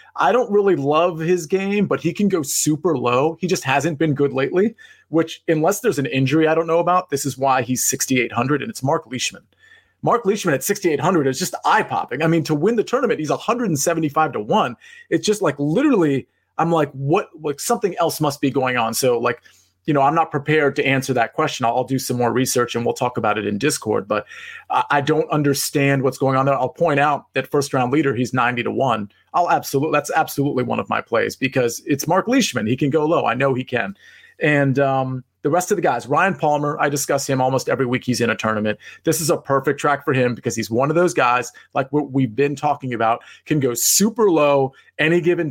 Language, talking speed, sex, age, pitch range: English, 230 wpm, male, 30-49, 130-165 Hz